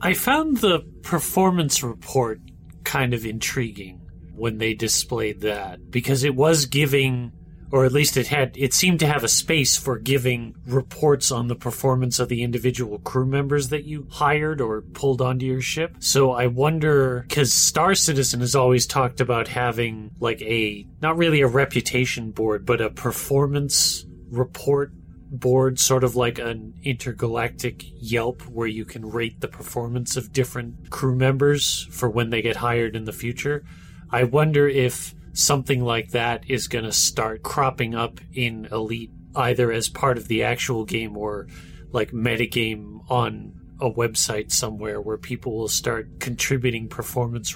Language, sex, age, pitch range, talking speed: English, male, 30-49, 110-135 Hz, 160 wpm